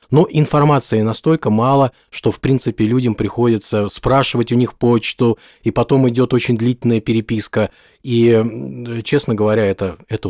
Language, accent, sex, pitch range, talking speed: Russian, native, male, 105-135 Hz, 140 wpm